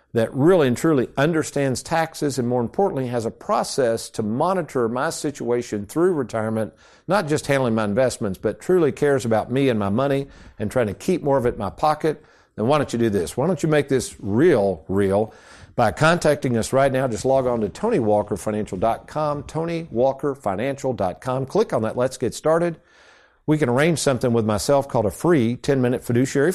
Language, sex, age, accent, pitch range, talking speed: English, male, 50-69, American, 110-150 Hz, 185 wpm